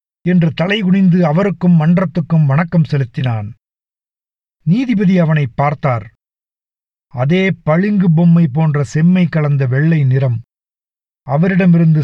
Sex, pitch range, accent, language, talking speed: male, 145-180 Hz, native, Tamil, 90 wpm